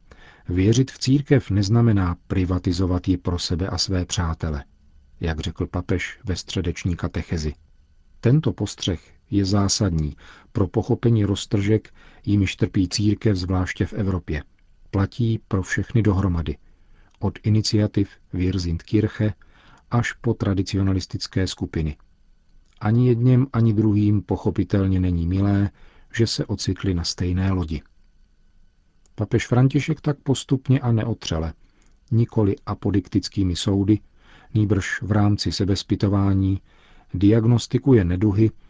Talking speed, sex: 110 wpm, male